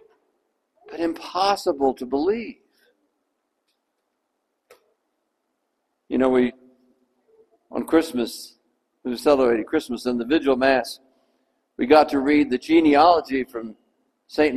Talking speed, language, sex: 105 wpm, English, male